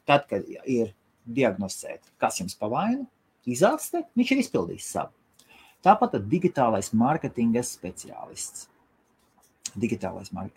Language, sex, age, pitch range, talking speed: English, male, 30-49, 100-150 Hz, 95 wpm